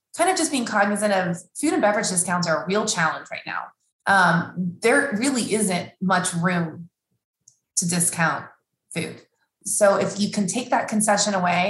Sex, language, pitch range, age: female, English, 175-220 Hz, 20-39